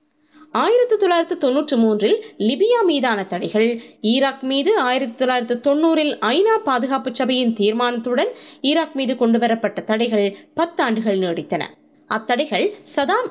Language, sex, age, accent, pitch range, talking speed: Tamil, female, 20-39, native, 220-310 Hz, 105 wpm